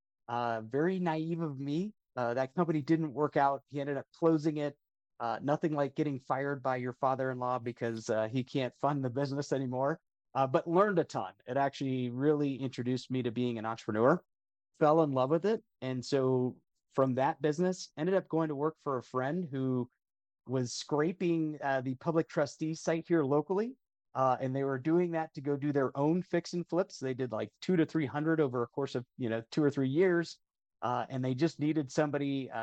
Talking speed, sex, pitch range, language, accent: 205 wpm, male, 125-155 Hz, English, American